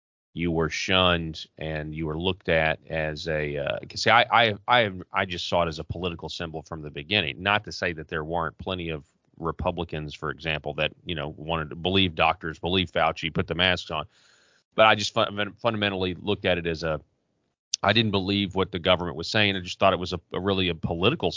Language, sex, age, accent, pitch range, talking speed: English, male, 30-49, American, 80-100 Hz, 220 wpm